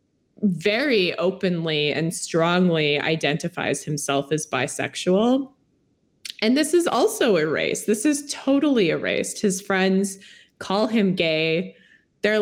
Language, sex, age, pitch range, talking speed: English, female, 20-39, 155-210 Hz, 110 wpm